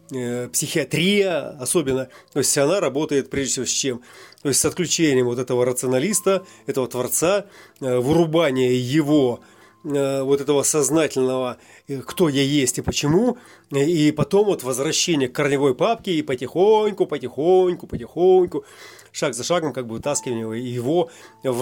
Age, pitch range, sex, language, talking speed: 30-49, 130-175 Hz, male, Russian, 135 wpm